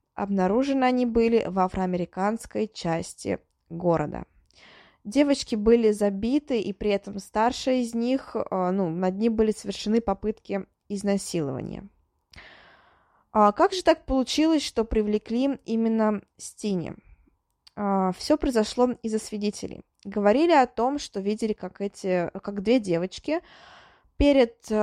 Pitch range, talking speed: 200-250 Hz, 110 wpm